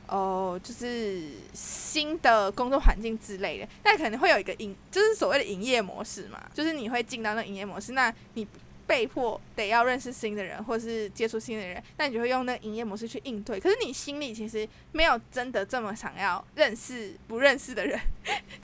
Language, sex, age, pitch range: Chinese, female, 20-39, 210-295 Hz